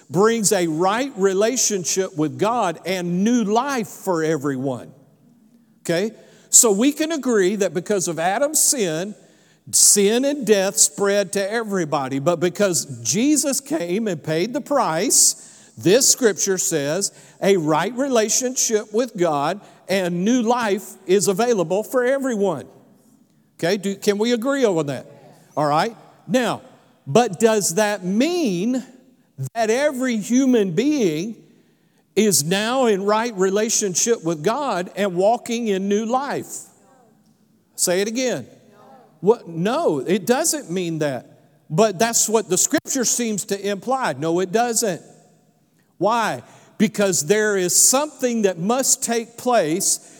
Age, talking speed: 50-69, 130 wpm